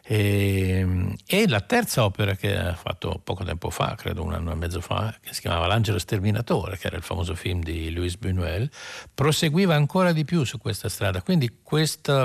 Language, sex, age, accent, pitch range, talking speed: Italian, male, 60-79, native, 95-120 Hz, 190 wpm